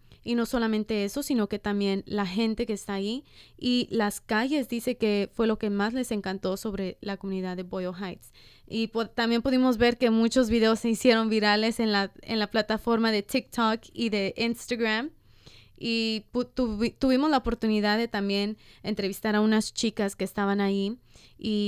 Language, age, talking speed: Spanish, 20-39, 185 wpm